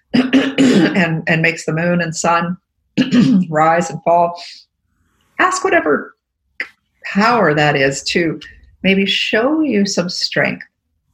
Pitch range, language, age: 150-195 Hz, English, 50-69